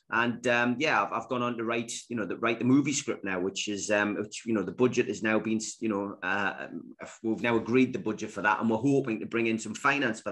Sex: male